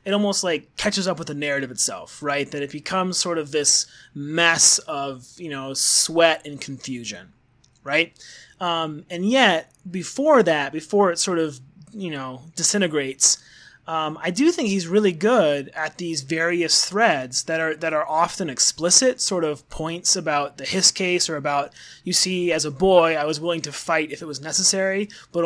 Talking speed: 180 wpm